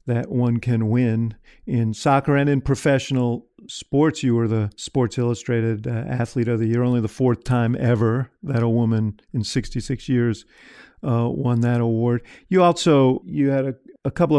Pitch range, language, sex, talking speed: 120-135 Hz, English, male, 175 wpm